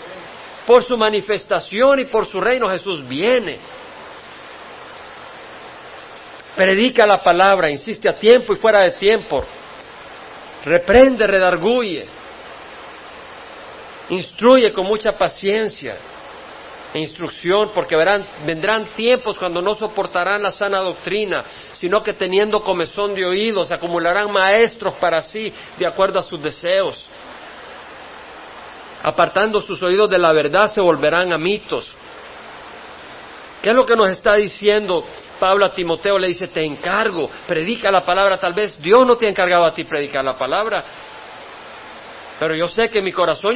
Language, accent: Spanish, Mexican